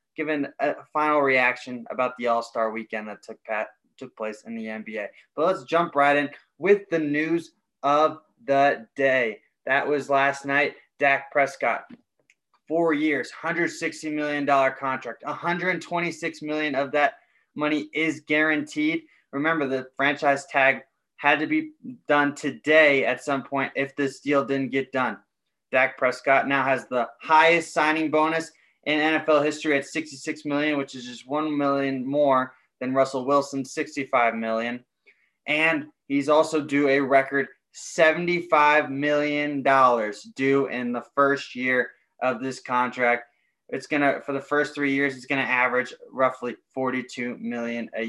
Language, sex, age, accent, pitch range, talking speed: English, male, 20-39, American, 130-155 Hz, 145 wpm